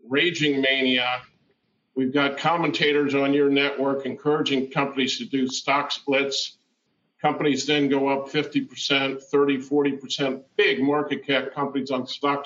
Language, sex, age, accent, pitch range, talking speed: English, male, 50-69, American, 130-145 Hz, 130 wpm